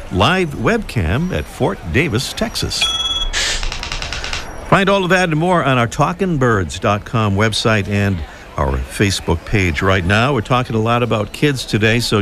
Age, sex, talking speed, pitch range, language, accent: 50-69, male, 145 wpm, 100-145 Hz, English, American